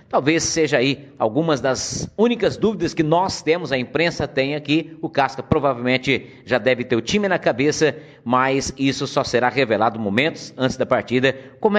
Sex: male